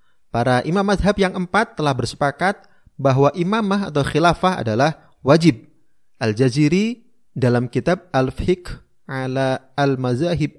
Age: 30-49